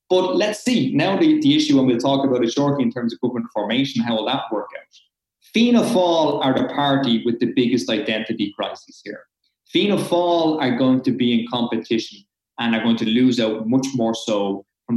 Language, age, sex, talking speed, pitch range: English, 20-39, male, 210 wpm, 120-165 Hz